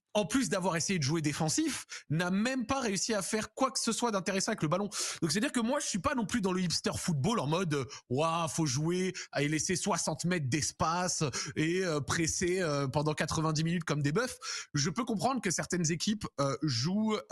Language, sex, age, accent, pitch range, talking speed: French, male, 20-39, French, 140-190 Hz, 220 wpm